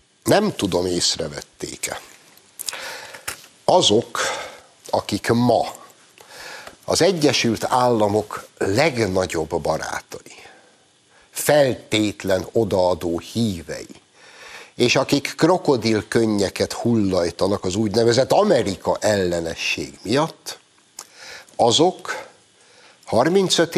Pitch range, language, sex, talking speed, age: 105-145 Hz, Hungarian, male, 65 wpm, 60-79